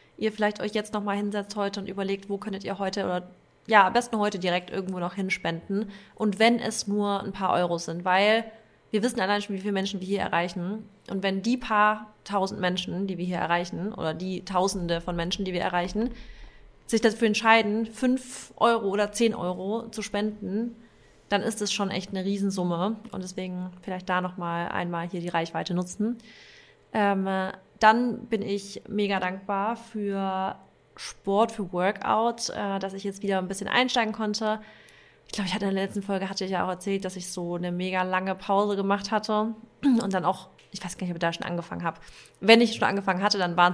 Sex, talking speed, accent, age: female, 200 wpm, German, 30-49